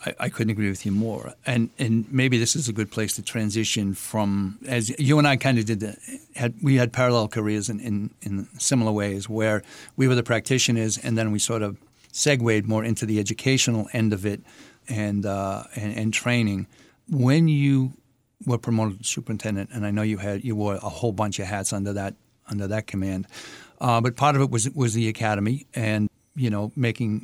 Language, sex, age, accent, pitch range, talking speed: English, male, 50-69, American, 105-125 Hz, 205 wpm